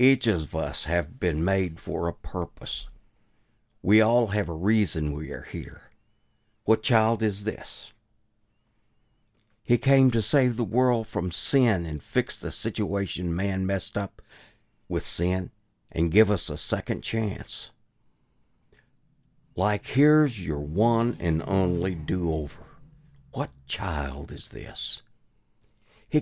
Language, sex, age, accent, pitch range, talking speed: English, male, 60-79, American, 95-120 Hz, 130 wpm